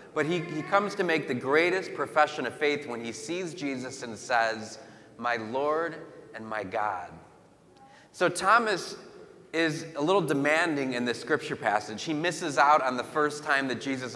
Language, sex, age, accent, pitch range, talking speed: English, male, 30-49, American, 130-165 Hz, 175 wpm